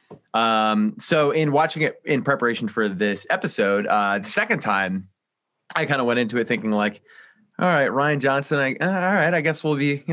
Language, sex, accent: English, male, American